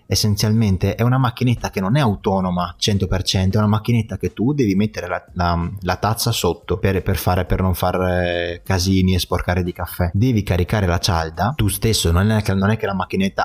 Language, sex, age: Italian, male, 30-49